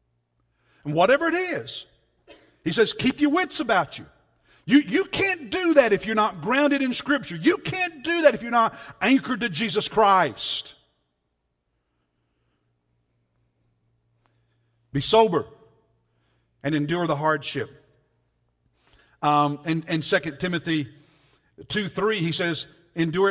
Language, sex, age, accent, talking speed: English, male, 60-79, American, 125 wpm